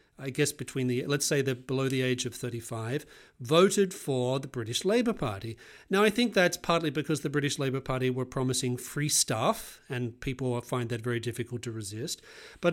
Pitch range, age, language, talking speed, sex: 125-165 Hz, 40-59, English, 195 wpm, male